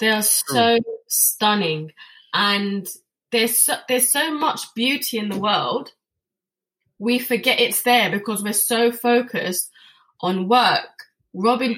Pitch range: 185-225 Hz